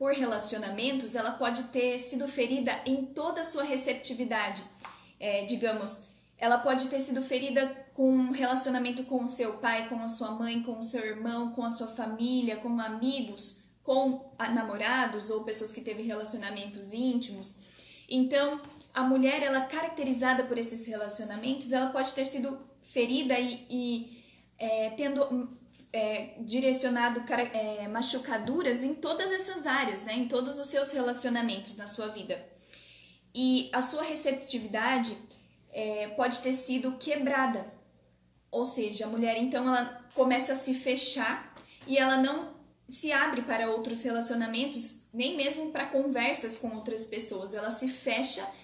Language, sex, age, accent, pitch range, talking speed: Portuguese, female, 10-29, Brazilian, 225-265 Hz, 150 wpm